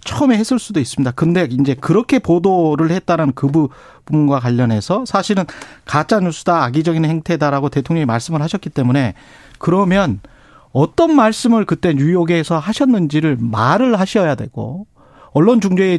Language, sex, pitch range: Korean, male, 145-200 Hz